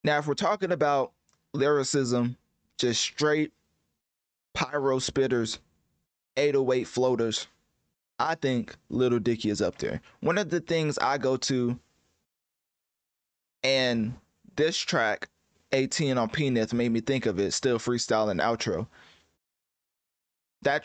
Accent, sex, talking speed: American, male, 120 wpm